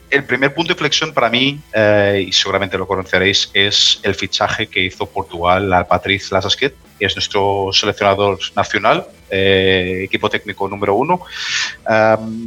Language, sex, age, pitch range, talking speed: Spanish, male, 30-49, 100-130 Hz, 155 wpm